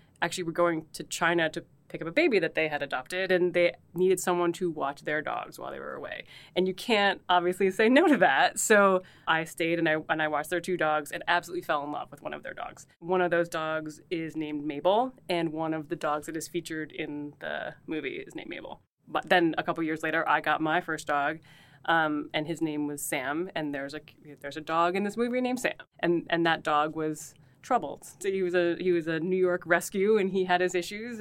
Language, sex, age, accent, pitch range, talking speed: English, female, 20-39, American, 155-195 Hz, 240 wpm